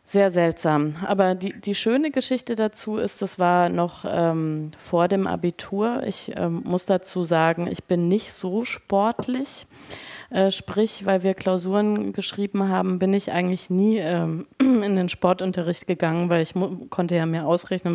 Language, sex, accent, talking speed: German, female, German, 155 wpm